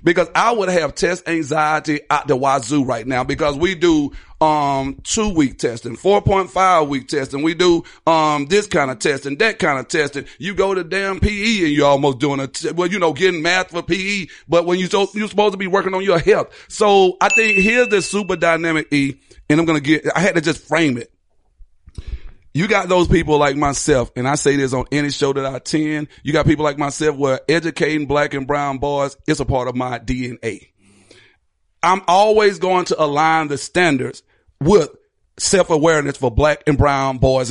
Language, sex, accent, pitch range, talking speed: English, male, American, 140-185 Hz, 205 wpm